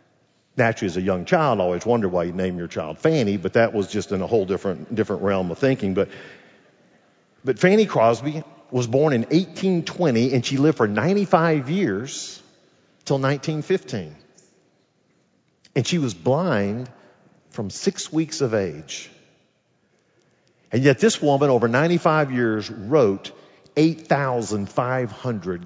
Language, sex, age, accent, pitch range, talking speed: English, male, 50-69, American, 115-160 Hz, 140 wpm